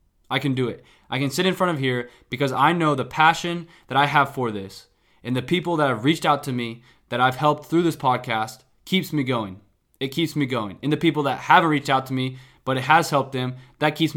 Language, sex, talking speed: English, male, 250 wpm